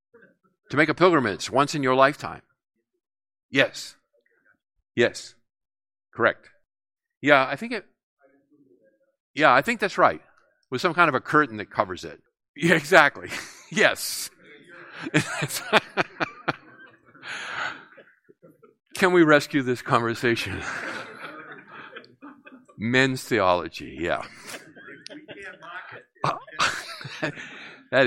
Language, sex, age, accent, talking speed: English, male, 50-69, American, 90 wpm